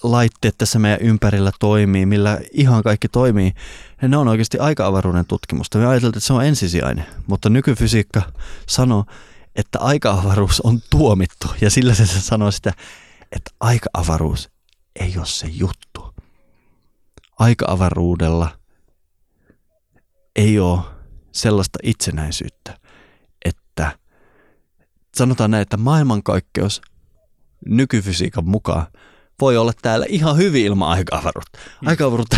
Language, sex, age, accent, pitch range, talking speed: Finnish, male, 20-39, native, 85-110 Hz, 110 wpm